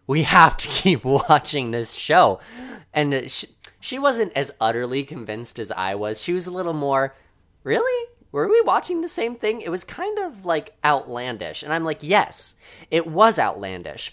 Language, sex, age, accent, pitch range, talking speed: English, male, 20-39, American, 115-160 Hz, 180 wpm